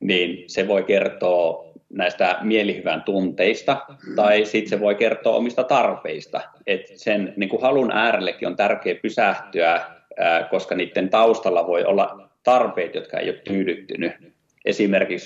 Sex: male